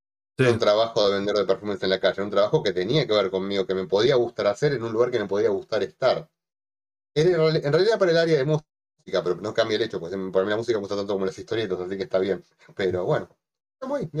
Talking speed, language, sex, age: 250 wpm, Spanish, male, 30-49